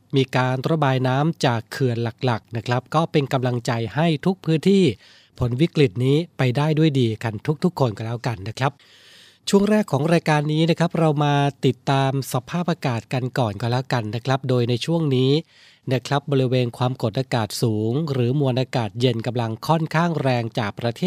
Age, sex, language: 20-39, male, Thai